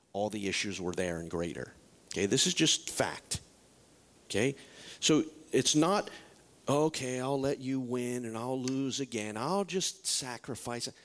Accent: American